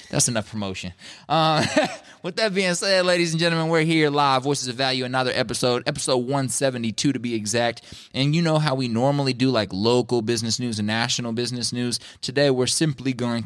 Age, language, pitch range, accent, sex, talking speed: 20-39, English, 90-120 Hz, American, male, 195 wpm